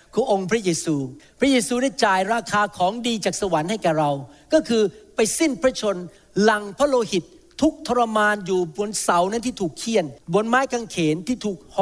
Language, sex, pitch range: Thai, male, 185-255 Hz